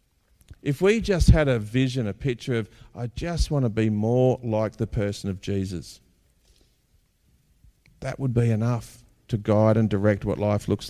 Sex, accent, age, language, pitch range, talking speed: male, Australian, 50-69, English, 105-130 Hz, 170 wpm